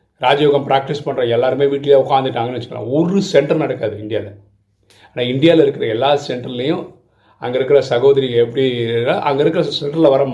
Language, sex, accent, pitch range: Tamil, male, native, 120-155 Hz